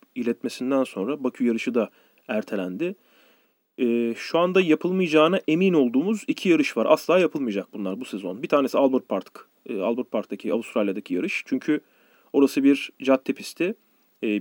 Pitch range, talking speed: 115-175 Hz, 145 wpm